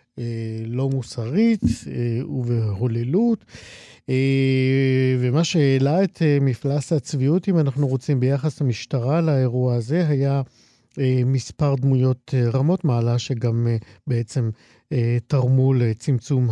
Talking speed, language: 85 wpm, Hebrew